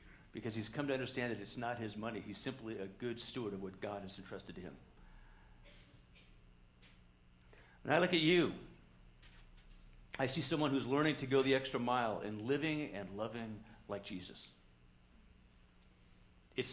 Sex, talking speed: male, 160 wpm